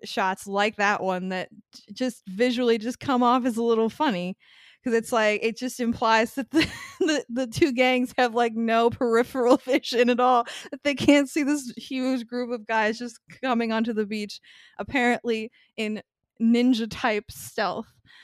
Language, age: English, 20-39